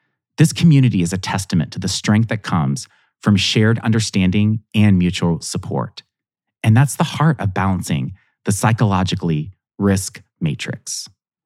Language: English